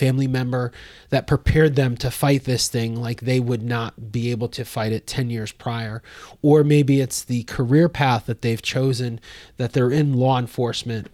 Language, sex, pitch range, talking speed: English, male, 120-140 Hz, 190 wpm